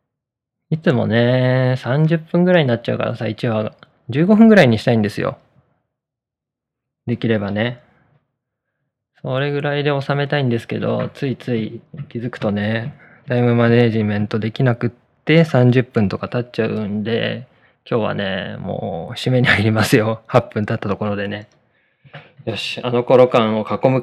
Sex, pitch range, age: male, 110-145 Hz, 20-39